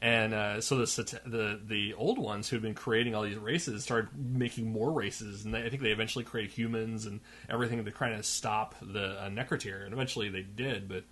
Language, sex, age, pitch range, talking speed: English, male, 30-49, 105-120 Hz, 220 wpm